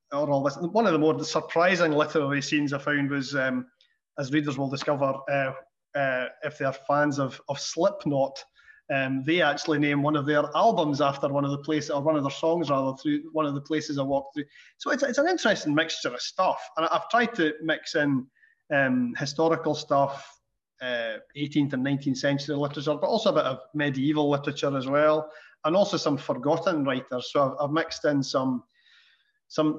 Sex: male